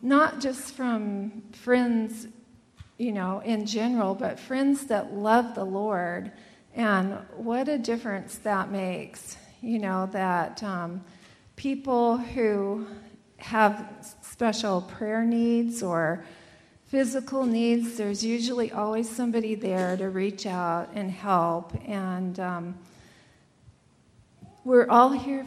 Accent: American